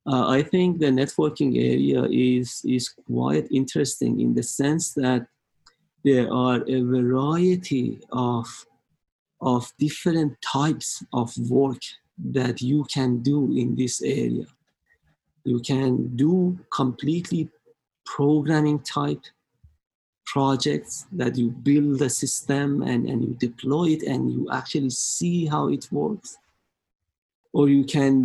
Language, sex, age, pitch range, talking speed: English, male, 50-69, 125-145 Hz, 125 wpm